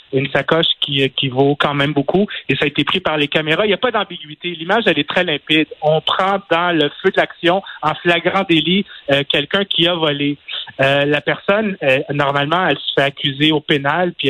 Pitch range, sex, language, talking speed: 150-185 Hz, male, French, 225 wpm